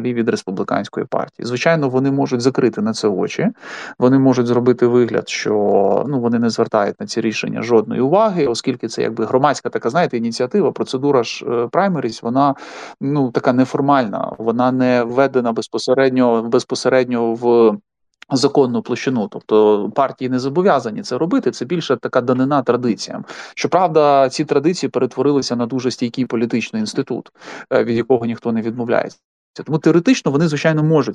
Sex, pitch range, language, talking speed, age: male, 120-135 Hz, Ukrainian, 145 wpm, 30-49